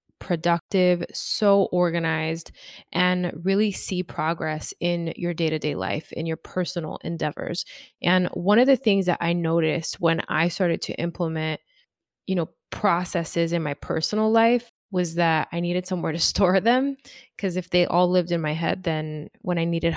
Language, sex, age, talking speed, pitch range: English, female, 20-39, 170 wpm, 170-200 Hz